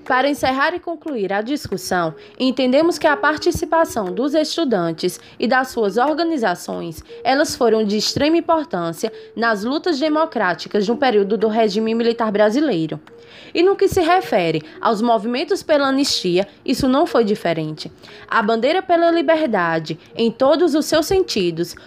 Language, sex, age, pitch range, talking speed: Portuguese, female, 20-39, 200-305 Hz, 145 wpm